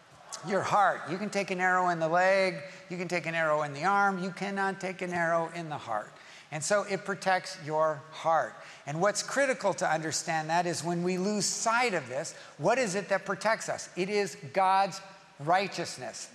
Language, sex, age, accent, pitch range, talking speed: English, male, 50-69, American, 175-210 Hz, 200 wpm